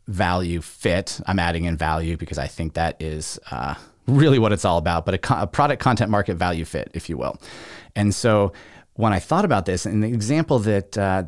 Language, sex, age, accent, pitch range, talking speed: English, male, 30-49, American, 85-110 Hz, 220 wpm